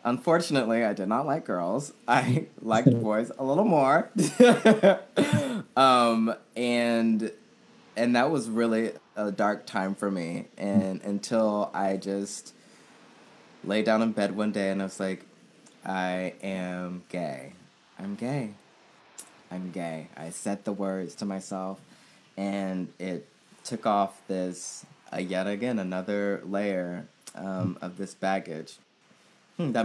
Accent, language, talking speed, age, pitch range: American, English, 130 wpm, 20-39, 90-105 Hz